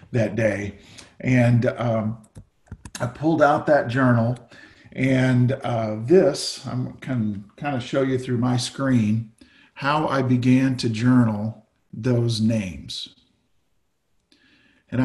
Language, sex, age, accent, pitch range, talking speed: English, male, 50-69, American, 110-135 Hz, 115 wpm